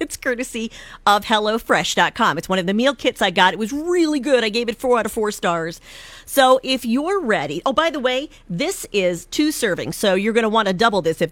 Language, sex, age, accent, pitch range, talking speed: English, female, 40-59, American, 195-275 Hz, 235 wpm